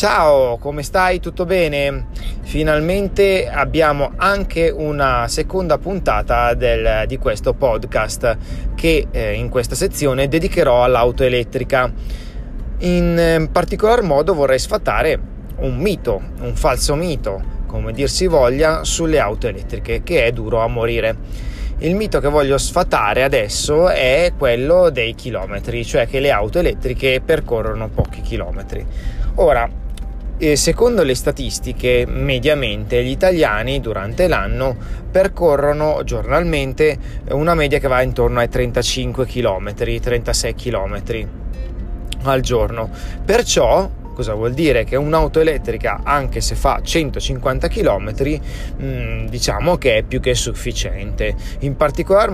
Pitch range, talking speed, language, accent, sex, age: 115-155 Hz, 120 wpm, Italian, native, male, 30-49